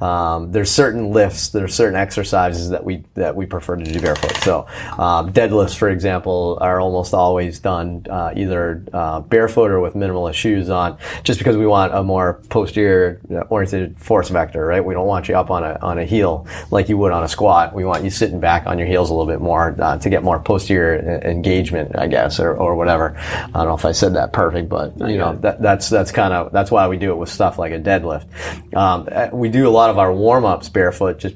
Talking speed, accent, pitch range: 230 wpm, American, 85-100 Hz